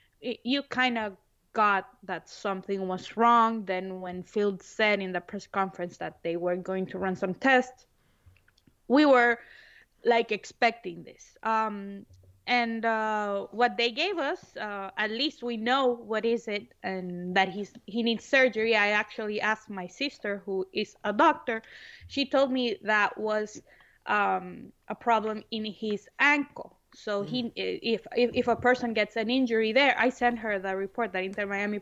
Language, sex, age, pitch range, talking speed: English, female, 20-39, 195-240 Hz, 170 wpm